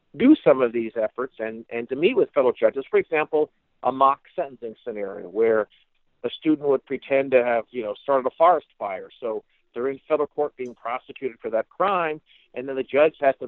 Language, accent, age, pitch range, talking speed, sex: English, American, 50-69, 125-185 Hz, 210 wpm, male